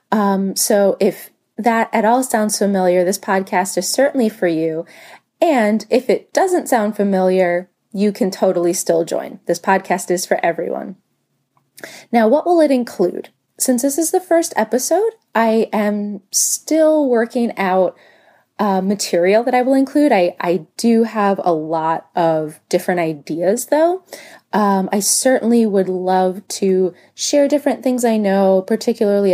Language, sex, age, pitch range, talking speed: English, female, 20-39, 185-240 Hz, 150 wpm